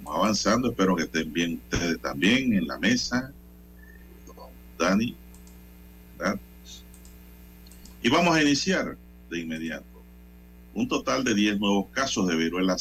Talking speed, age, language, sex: 115 wpm, 50-69, Spanish, male